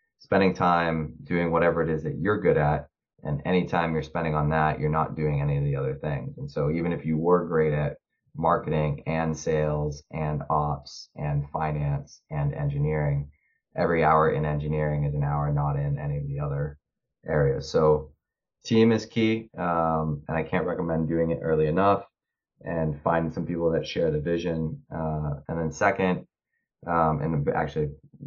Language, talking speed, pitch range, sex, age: English, 175 wpm, 75-85 Hz, male, 30-49